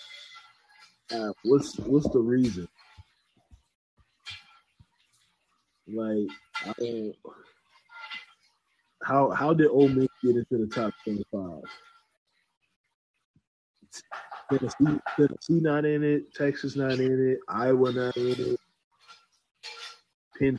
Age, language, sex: 20-39, English, male